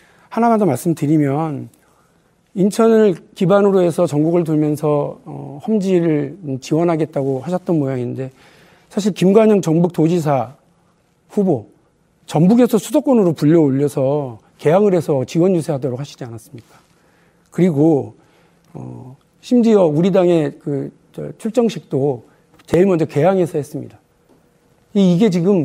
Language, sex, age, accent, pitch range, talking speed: English, male, 50-69, Korean, 150-195 Hz, 95 wpm